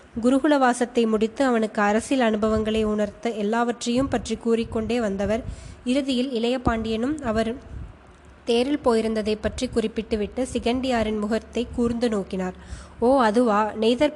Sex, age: female, 20-39